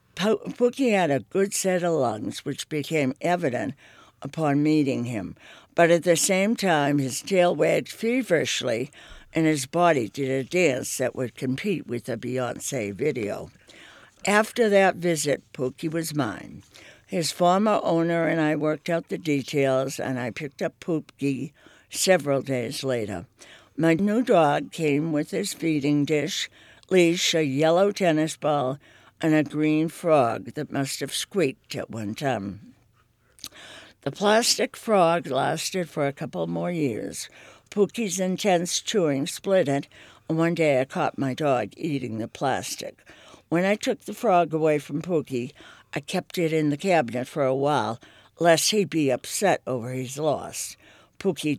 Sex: female